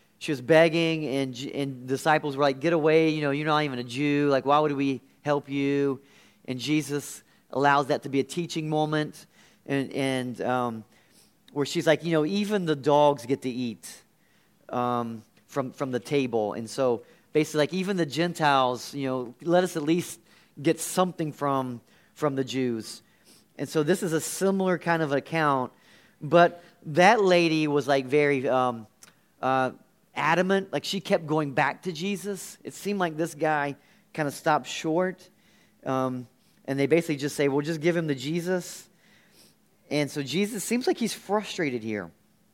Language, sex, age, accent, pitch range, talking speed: English, male, 30-49, American, 135-170 Hz, 175 wpm